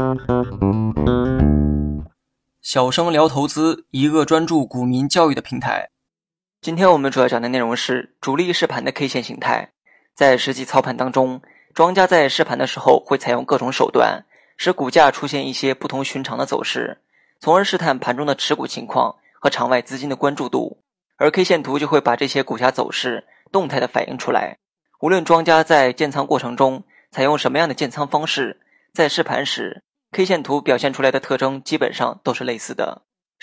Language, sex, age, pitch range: Chinese, male, 20-39, 125-160 Hz